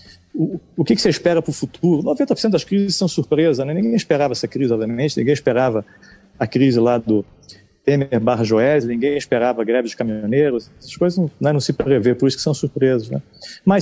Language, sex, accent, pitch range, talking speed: Portuguese, male, Brazilian, 125-155 Hz, 195 wpm